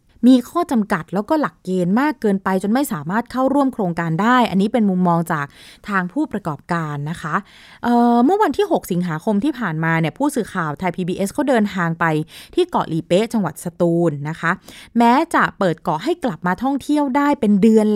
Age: 20-39